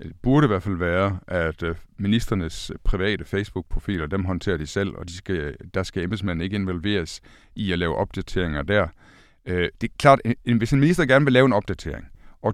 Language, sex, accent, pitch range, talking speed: Danish, male, native, 95-130 Hz, 185 wpm